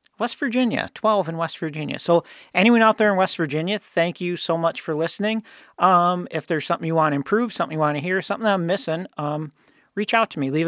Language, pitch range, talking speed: English, 150-185 Hz, 230 wpm